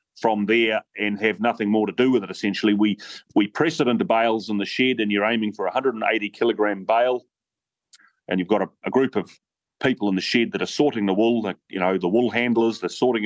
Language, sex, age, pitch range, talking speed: English, male, 30-49, 100-120 Hz, 230 wpm